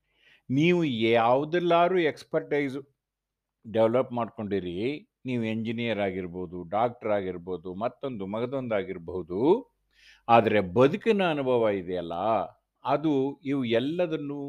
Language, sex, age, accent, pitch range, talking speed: Kannada, male, 50-69, native, 115-175 Hz, 40 wpm